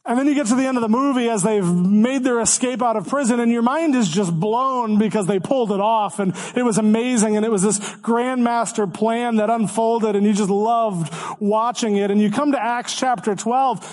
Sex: male